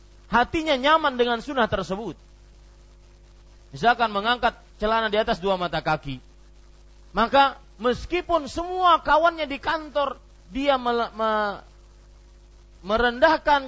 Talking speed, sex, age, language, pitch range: 100 wpm, male, 30-49, Malay, 180-285 Hz